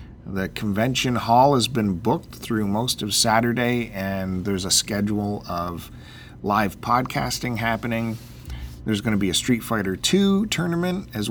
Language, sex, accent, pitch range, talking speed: English, male, American, 95-120 Hz, 150 wpm